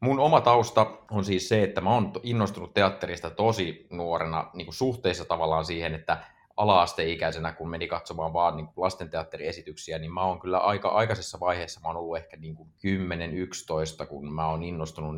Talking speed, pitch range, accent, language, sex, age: 165 wpm, 80-95 Hz, native, Finnish, male, 30-49